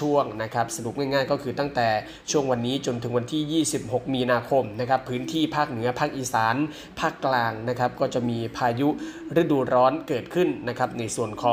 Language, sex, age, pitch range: Thai, male, 20-39, 125-150 Hz